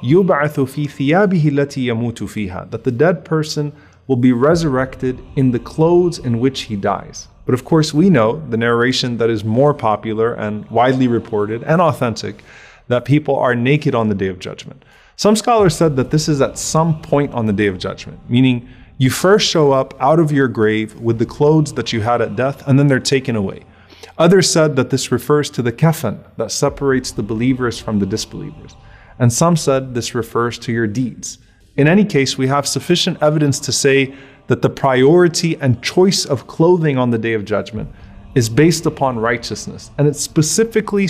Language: English